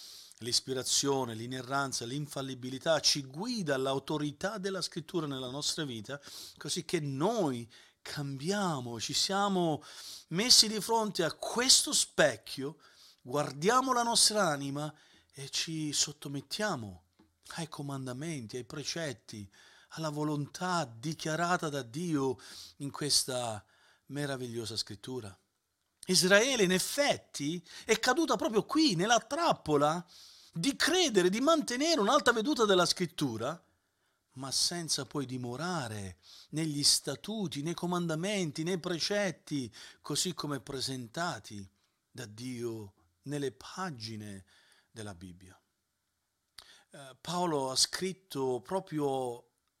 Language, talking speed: Italian, 100 wpm